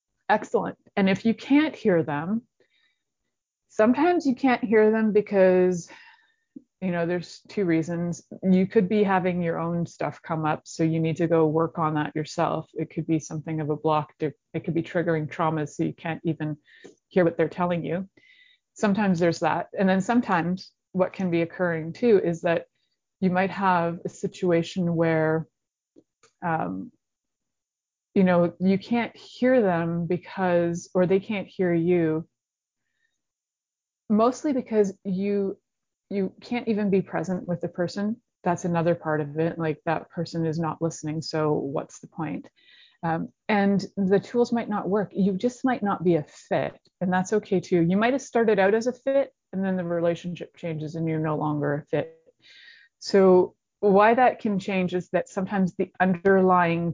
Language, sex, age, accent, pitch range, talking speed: English, female, 30-49, American, 165-205 Hz, 170 wpm